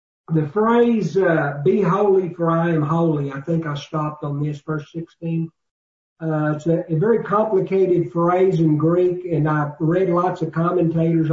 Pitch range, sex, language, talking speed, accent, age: 155-185 Hz, male, English, 170 wpm, American, 50-69